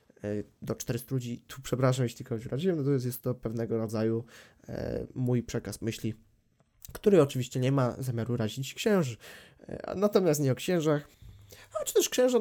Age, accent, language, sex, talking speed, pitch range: 20-39, native, Polish, male, 170 wpm, 125-155 Hz